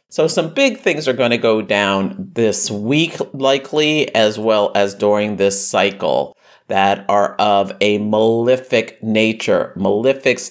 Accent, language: American, English